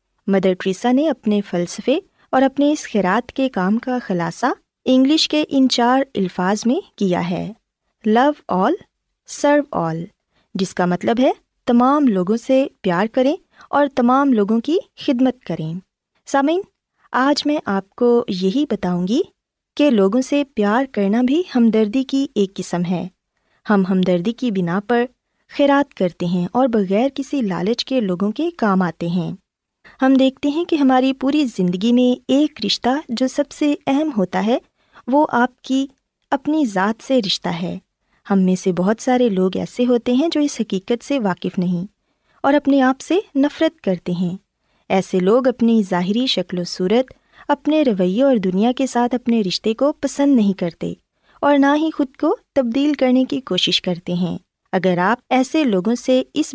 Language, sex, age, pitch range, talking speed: Urdu, female, 20-39, 195-280 Hz, 170 wpm